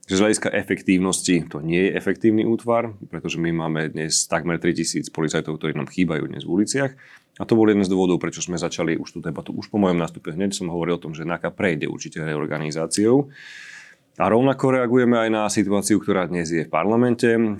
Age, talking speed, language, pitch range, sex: 30-49, 200 wpm, Slovak, 85-110 Hz, male